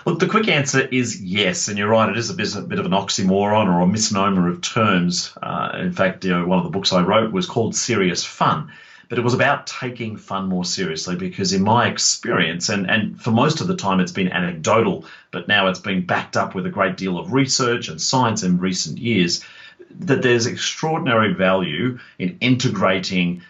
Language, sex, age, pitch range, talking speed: English, male, 30-49, 95-130 Hz, 200 wpm